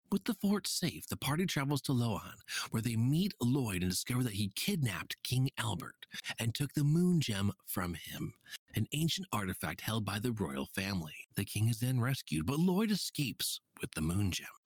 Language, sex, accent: English, male, American